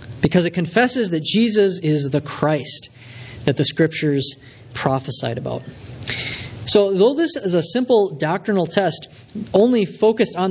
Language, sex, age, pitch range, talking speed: English, male, 20-39, 130-190 Hz, 135 wpm